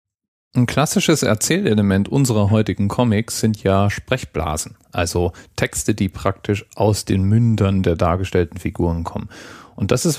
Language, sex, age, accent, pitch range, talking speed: German, male, 40-59, German, 95-120 Hz, 135 wpm